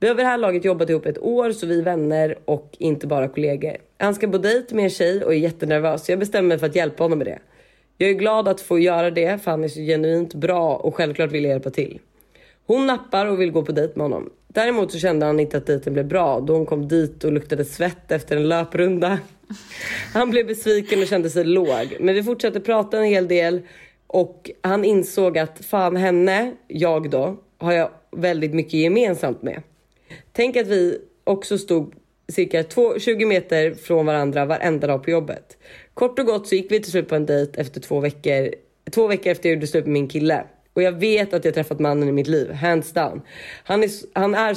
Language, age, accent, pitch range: Swedish, 30-49, native, 155-195 Hz